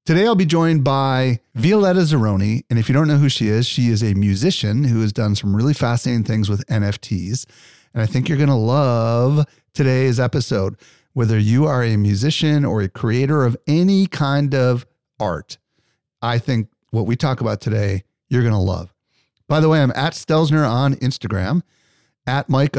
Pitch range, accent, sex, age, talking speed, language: 105-145 Hz, American, male, 40-59, 185 wpm, English